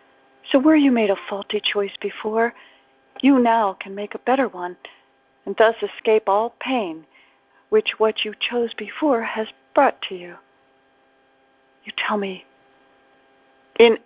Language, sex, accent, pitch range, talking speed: English, female, American, 180-235 Hz, 140 wpm